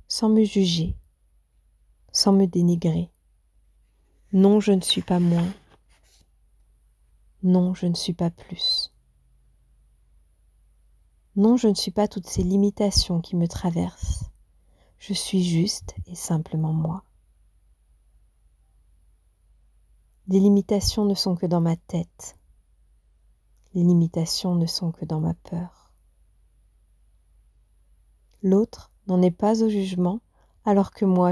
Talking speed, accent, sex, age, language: 115 wpm, French, female, 40-59, French